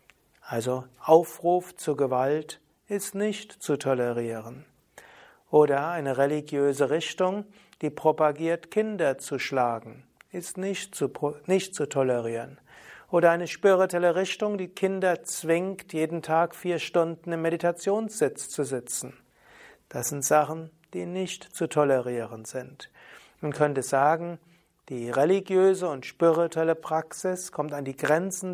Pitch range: 145-180 Hz